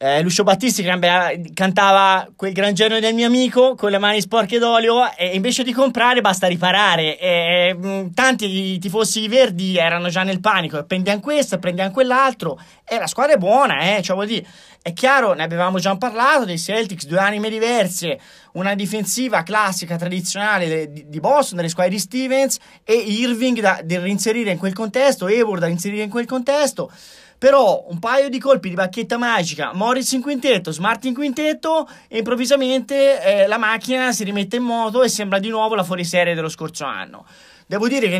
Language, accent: Italian, native